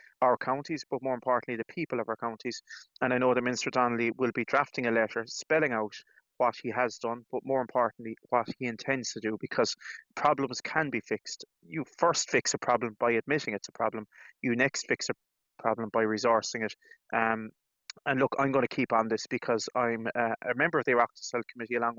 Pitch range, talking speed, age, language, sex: 115-130 Hz, 210 wpm, 20-39, English, male